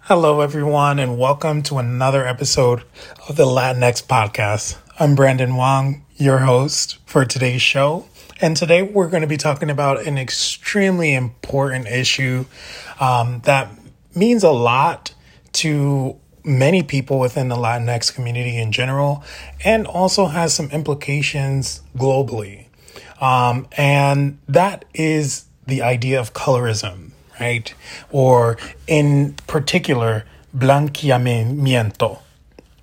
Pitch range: 125-150 Hz